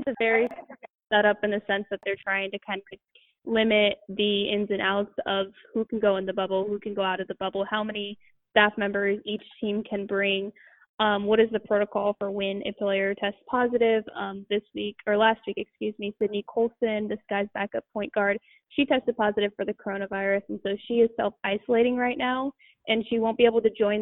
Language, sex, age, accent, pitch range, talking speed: English, female, 10-29, American, 205-235 Hz, 215 wpm